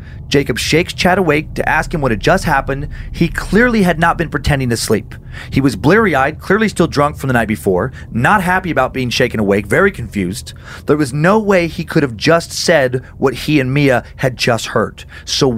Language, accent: English, American